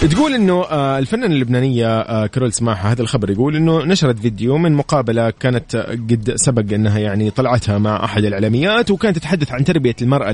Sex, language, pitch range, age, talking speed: male, Arabic, 110-145 Hz, 30-49, 165 wpm